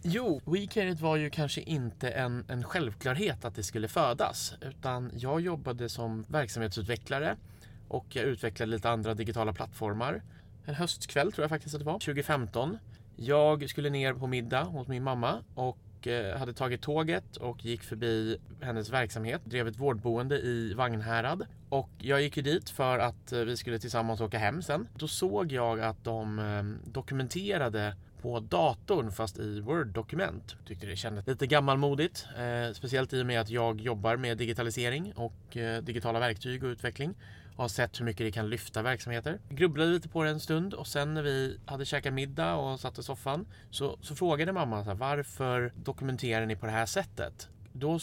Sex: male